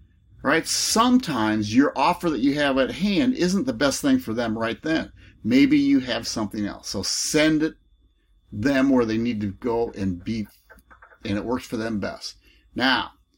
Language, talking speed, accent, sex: English, 180 wpm, American, male